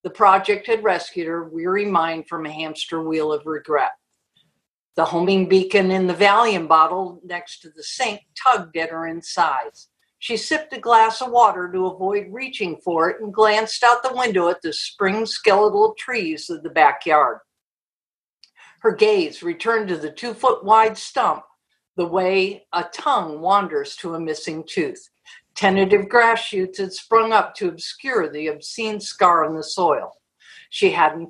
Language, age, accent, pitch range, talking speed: English, 60-79, American, 175-240 Hz, 165 wpm